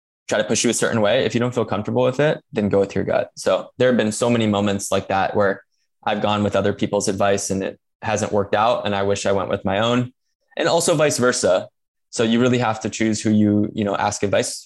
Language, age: English, 10-29